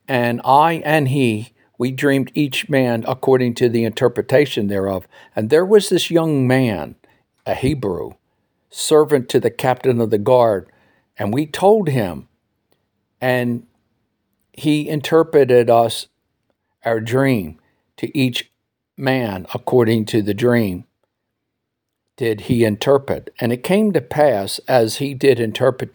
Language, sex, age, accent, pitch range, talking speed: English, male, 60-79, American, 110-135 Hz, 130 wpm